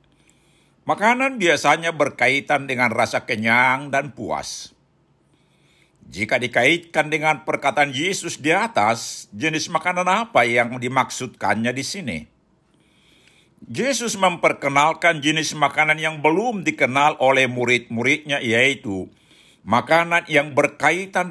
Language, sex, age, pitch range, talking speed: Indonesian, male, 60-79, 130-160 Hz, 100 wpm